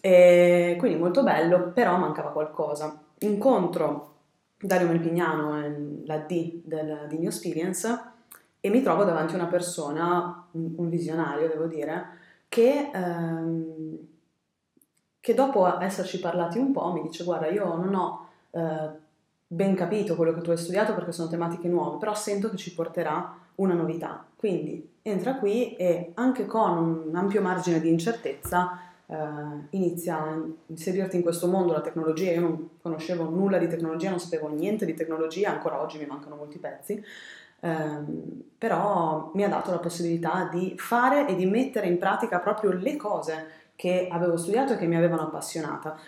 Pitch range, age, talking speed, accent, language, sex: 160-195 Hz, 20-39, 155 wpm, native, Italian, female